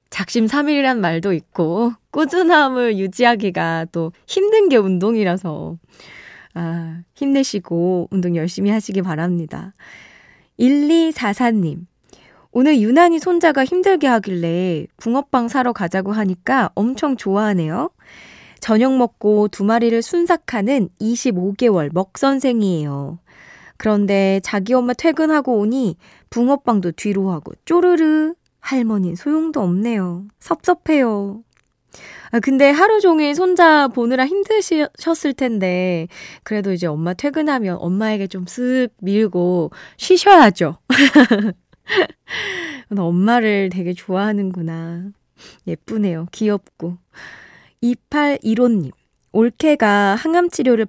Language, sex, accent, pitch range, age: Korean, female, native, 190-275 Hz, 20-39